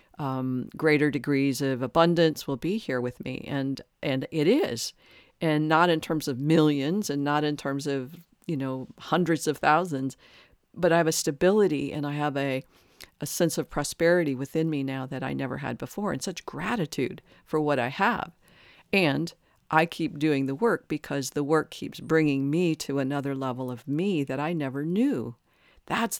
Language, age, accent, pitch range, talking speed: English, 50-69, American, 140-175 Hz, 185 wpm